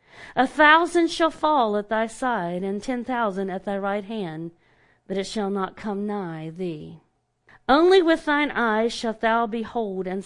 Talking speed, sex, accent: 170 wpm, female, American